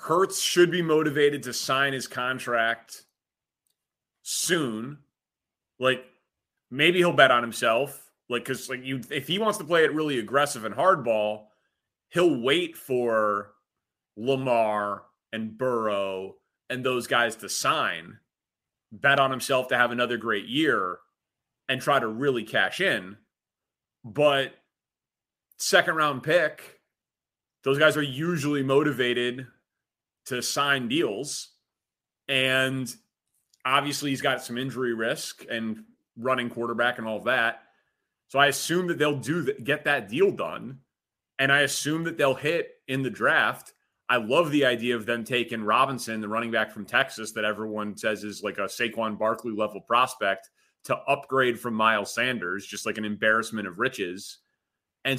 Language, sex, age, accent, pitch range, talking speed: English, male, 30-49, American, 115-145 Hz, 145 wpm